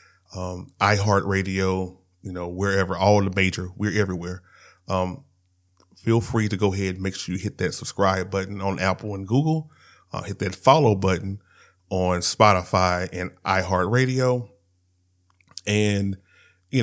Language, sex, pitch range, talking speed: English, male, 95-135 Hz, 140 wpm